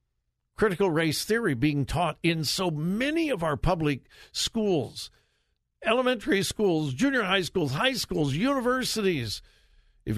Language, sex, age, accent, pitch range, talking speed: English, male, 60-79, American, 120-180 Hz, 125 wpm